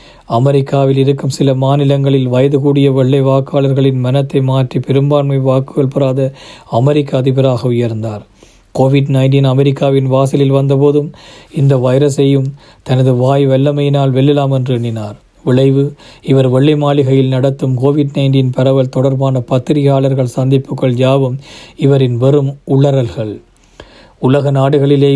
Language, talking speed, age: Tamil, 105 wpm, 50-69